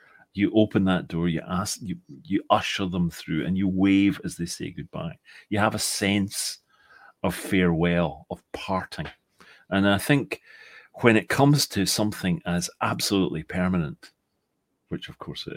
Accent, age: British, 40-59